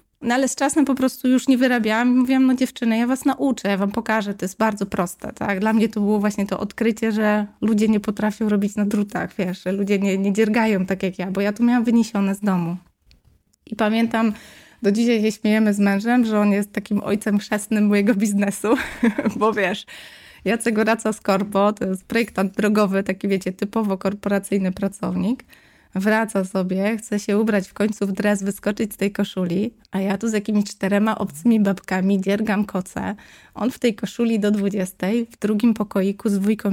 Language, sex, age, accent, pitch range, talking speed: Polish, female, 20-39, native, 200-225 Hz, 195 wpm